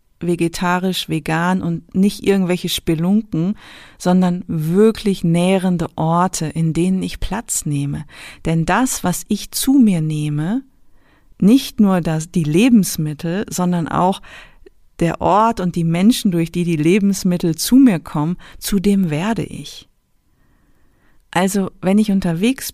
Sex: female